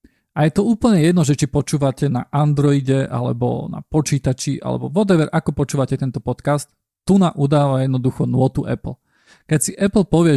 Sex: male